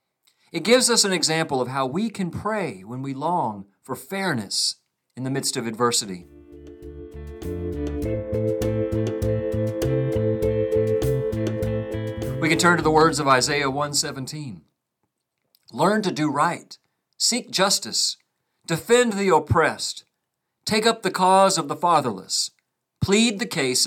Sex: male